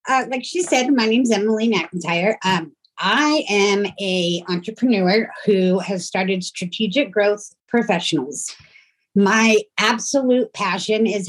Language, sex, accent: English, female, American